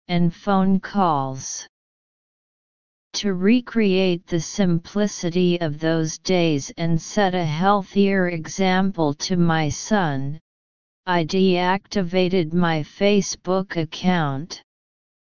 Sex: female